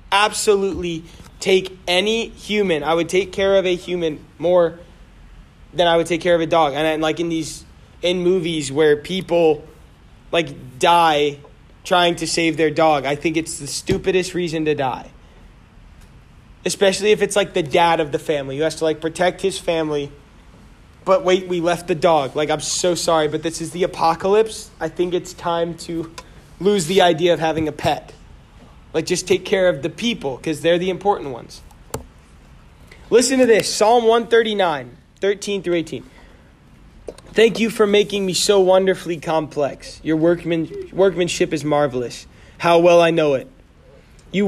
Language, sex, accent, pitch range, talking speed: English, male, American, 155-185 Hz, 165 wpm